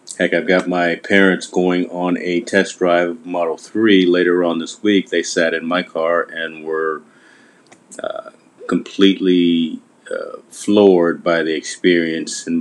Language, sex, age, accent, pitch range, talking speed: English, male, 30-49, American, 80-100 Hz, 150 wpm